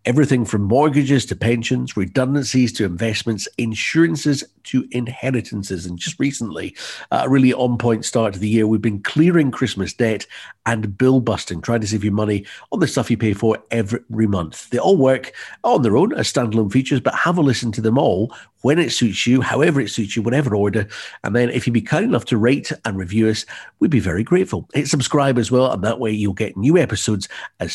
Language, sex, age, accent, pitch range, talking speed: English, male, 50-69, British, 105-130 Hz, 205 wpm